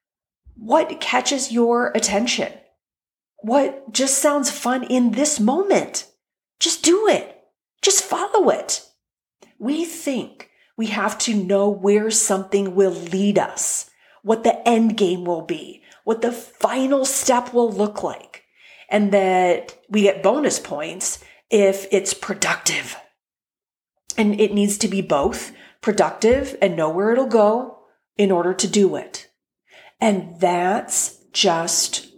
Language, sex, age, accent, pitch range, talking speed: English, female, 40-59, American, 195-265 Hz, 130 wpm